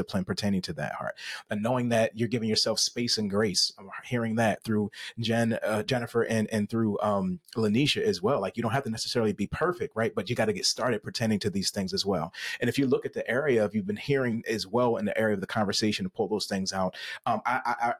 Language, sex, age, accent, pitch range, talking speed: English, male, 30-49, American, 110-135 Hz, 250 wpm